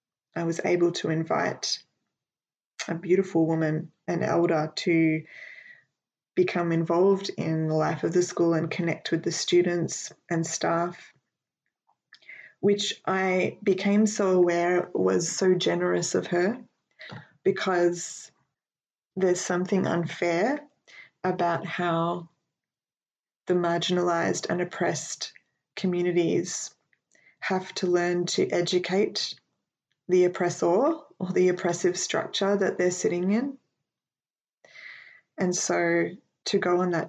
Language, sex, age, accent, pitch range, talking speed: English, female, 20-39, Australian, 170-190 Hz, 110 wpm